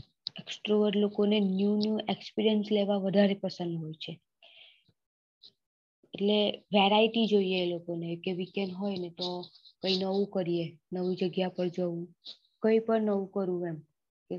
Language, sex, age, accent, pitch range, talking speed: English, female, 20-39, Indian, 175-200 Hz, 40 wpm